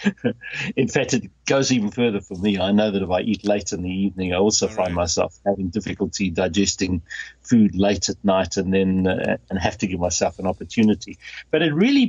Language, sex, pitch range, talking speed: English, male, 95-120 Hz, 210 wpm